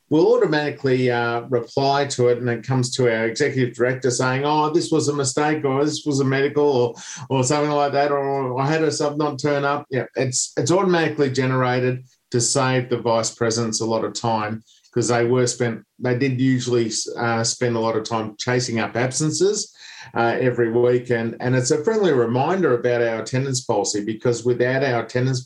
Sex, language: male, English